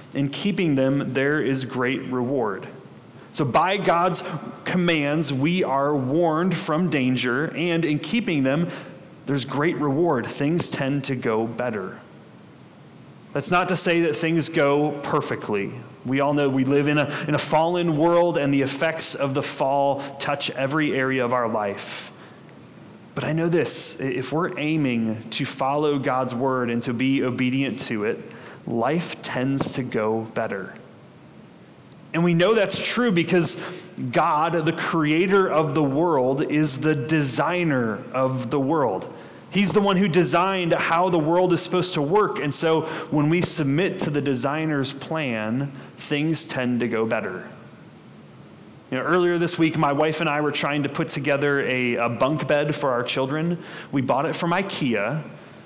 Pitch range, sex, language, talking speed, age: 135-170 Hz, male, English, 160 wpm, 30-49